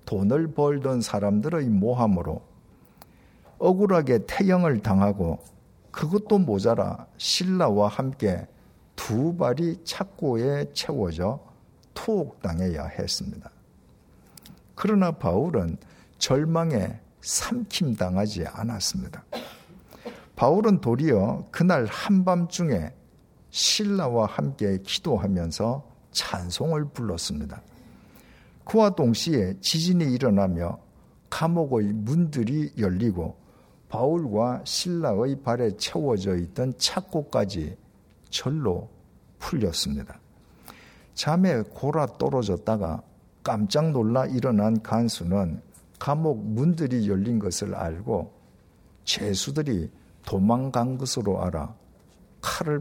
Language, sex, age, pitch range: Korean, male, 50-69, 100-155 Hz